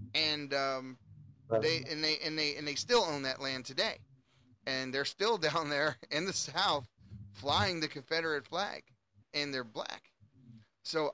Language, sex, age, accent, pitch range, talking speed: English, male, 30-49, American, 120-150 Hz, 160 wpm